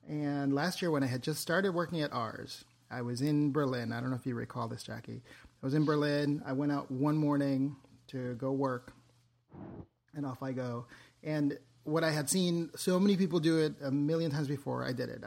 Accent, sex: American, male